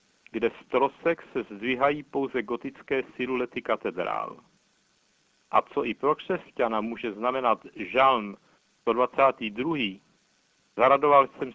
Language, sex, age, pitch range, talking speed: Czech, male, 60-79, 120-145 Hz, 105 wpm